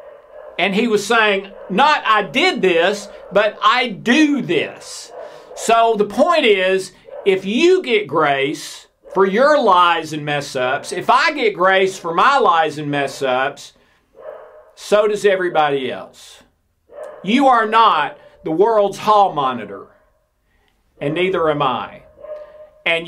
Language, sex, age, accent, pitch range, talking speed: English, male, 50-69, American, 150-225 Hz, 130 wpm